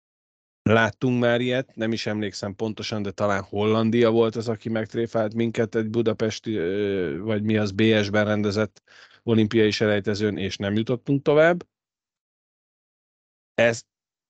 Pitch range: 100-115 Hz